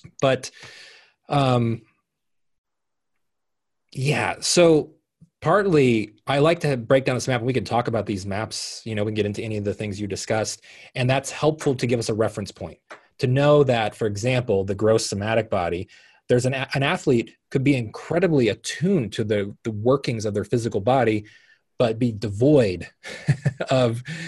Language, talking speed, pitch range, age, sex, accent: English, 170 wpm, 105-140 Hz, 30-49, male, American